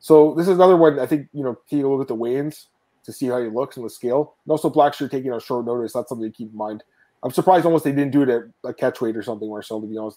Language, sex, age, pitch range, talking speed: English, male, 20-39, 120-145 Hz, 320 wpm